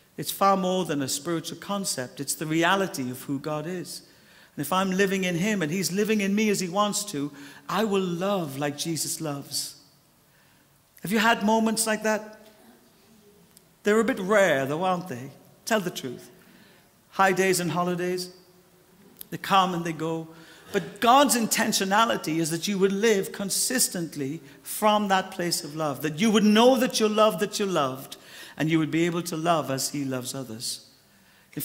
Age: 60-79